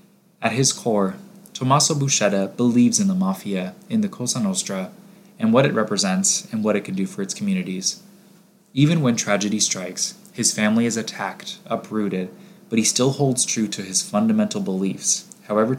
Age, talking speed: 20-39, 165 wpm